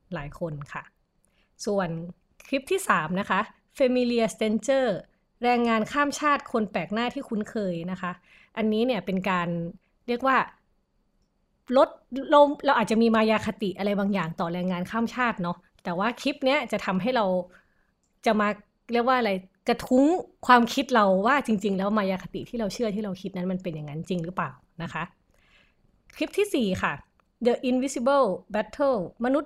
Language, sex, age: Thai, female, 20-39